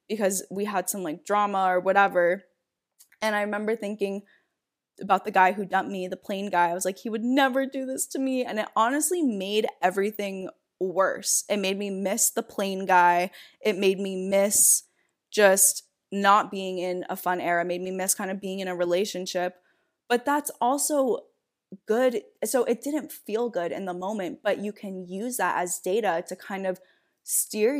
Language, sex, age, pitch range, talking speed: English, female, 10-29, 185-225 Hz, 190 wpm